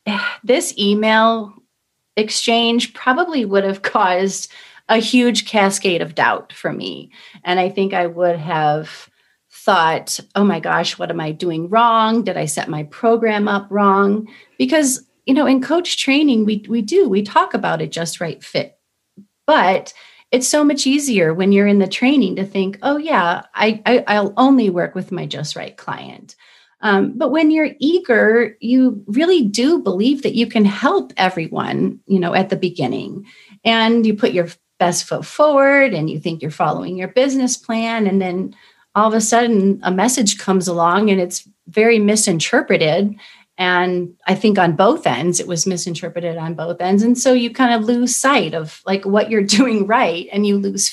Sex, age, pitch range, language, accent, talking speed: female, 30-49, 185-245 Hz, English, American, 180 wpm